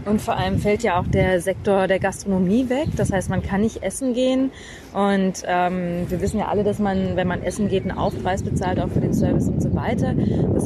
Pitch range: 185-210 Hz